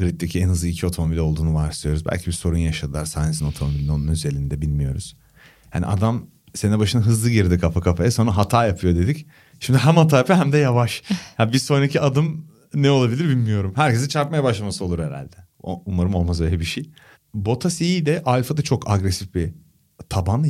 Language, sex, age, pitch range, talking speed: Turkish, male, 40-59, 85-120 Hz, 175 wpm